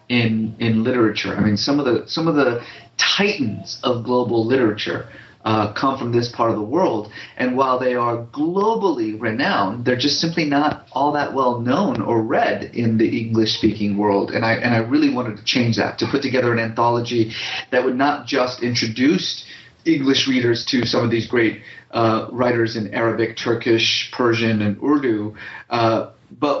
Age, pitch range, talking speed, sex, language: 30-49, 110-130 Hz, 180 wpm, male, English